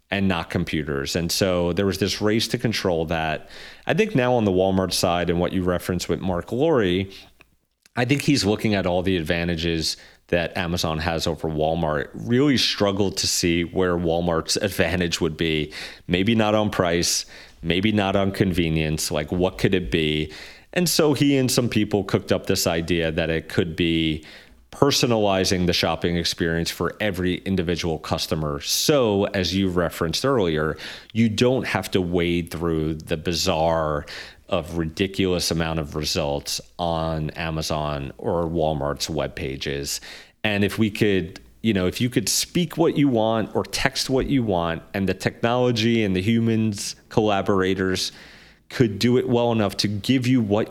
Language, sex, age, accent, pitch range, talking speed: English, male, 30-49, American, 80-105 Hz, 165 wpm